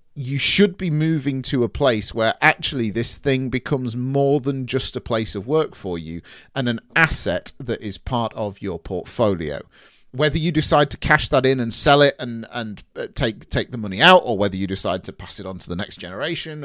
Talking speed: 215 wpm